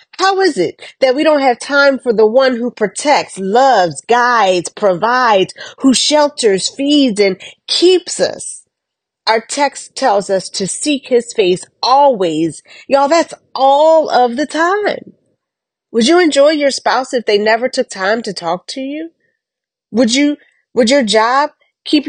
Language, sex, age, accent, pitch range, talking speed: English, female, 40-59, American, 205-290 Hz, 155 wpm